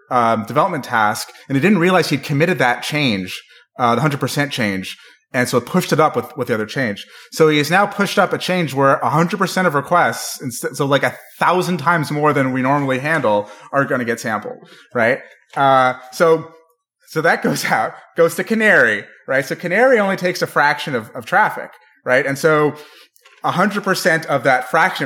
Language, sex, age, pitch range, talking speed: English, male, 30-49, 125-175 Hz, 205 wpm